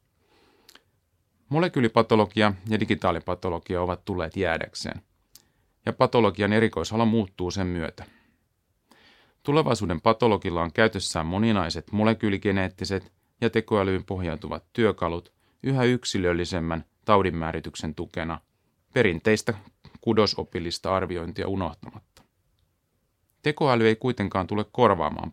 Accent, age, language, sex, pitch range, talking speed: native, 30-49, Finnish, male, 90-110 Hz, 85 wpm